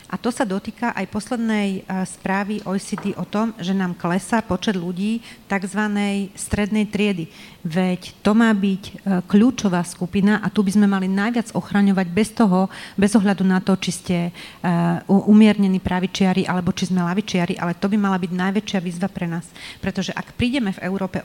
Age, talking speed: 40-59, 170 wpm